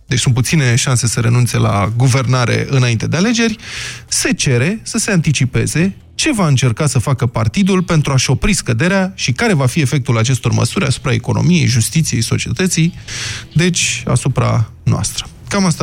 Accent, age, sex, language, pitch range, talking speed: native, 20-39, male, Romanian, 120-165 Hz, 160 wpm